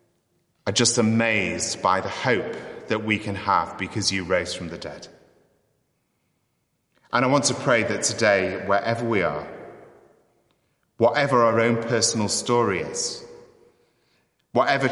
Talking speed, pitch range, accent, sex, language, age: 135 wpm, 100-130 Hz, British, male, English, 30-49